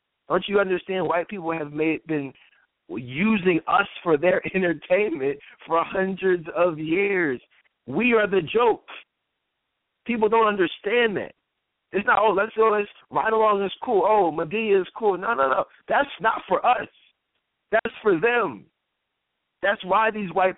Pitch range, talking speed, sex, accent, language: 165-200 Hz, 150 wpm, male, American, English